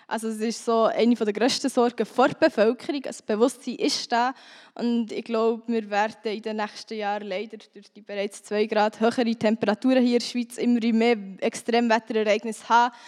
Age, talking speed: 10-29, 185 wpm